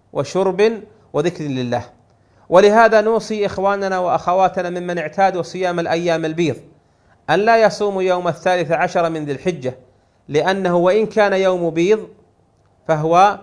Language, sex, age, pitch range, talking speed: Arabic, male, 40-59, 150-185 Hz, 120 wpm